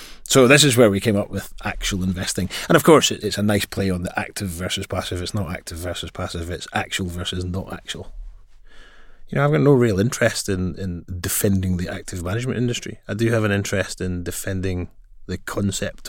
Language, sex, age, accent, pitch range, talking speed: English, male, 30-49, British, 95-120 Hz, 205 wpm